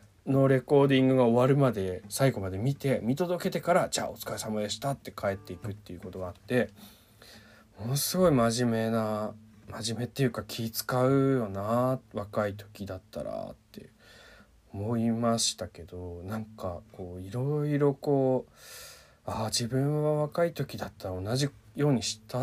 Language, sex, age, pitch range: Japanese, male, 20-39, 95-130 Hz